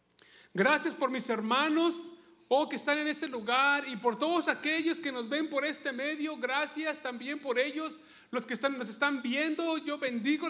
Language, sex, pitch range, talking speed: English, male, 245-300 Hz, 190 wpm